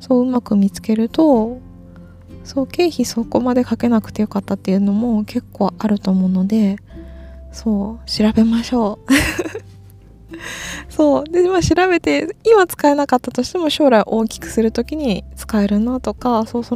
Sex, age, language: female, 20-39, Japanese